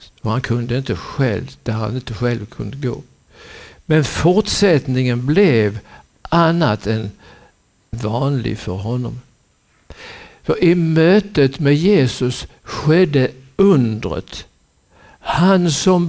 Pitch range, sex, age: 115-155 Hz, male, 60-79